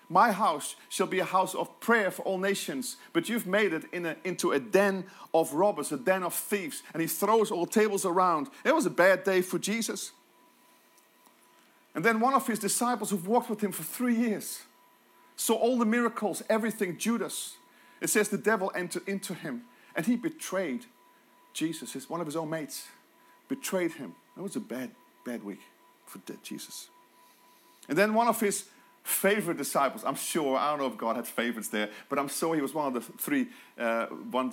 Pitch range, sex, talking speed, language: 195-275 Hz, male, 200 wpm, English